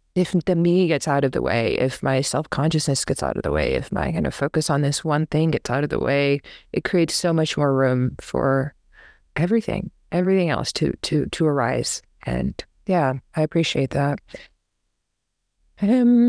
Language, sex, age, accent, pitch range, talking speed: English, female, 30-49, American, 140-190 Hz, 180 wpm